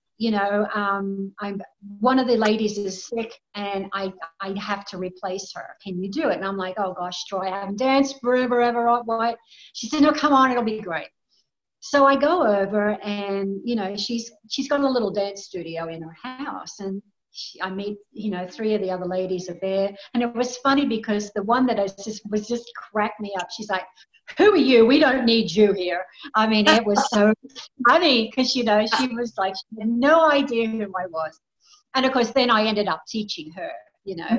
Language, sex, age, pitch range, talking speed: English, female, 50-69, 195-255 Hz, 220 wpm